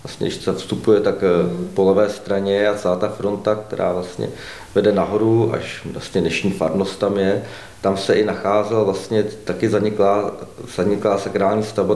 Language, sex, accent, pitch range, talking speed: Czech, male, native, 105-130 Hz, 160 wpm